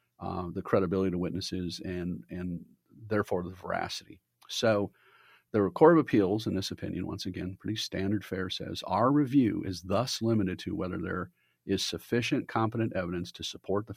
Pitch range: 90-115 Hz